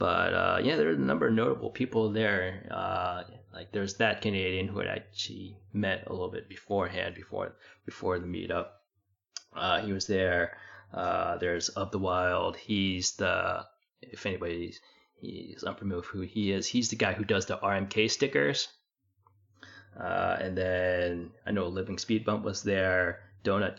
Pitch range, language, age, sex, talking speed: 90-105 Hz, English, 20-39, male, 165 wpm